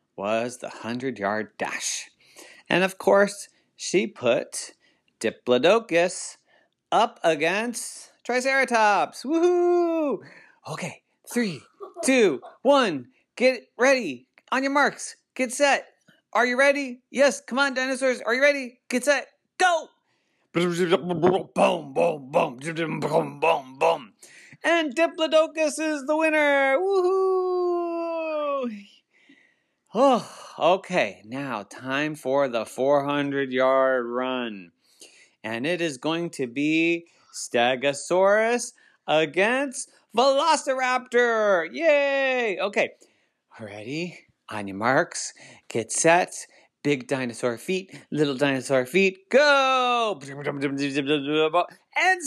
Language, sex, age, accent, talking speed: English, male, 30-49, American, 100 wpm